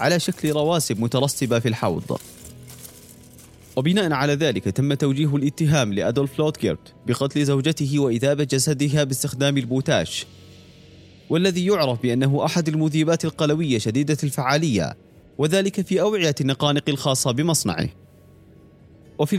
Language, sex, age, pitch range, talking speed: Arabic, male, 30-49, 125-160 Hz, 110 wpm